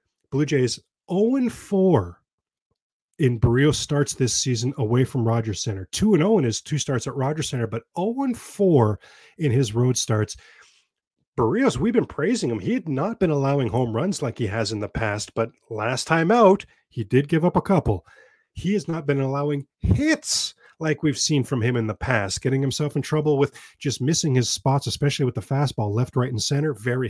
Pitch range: 115-150 Hz